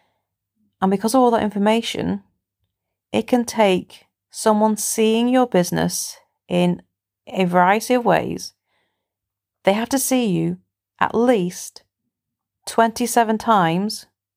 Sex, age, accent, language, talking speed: female, 30-49, British, English, 115 wpm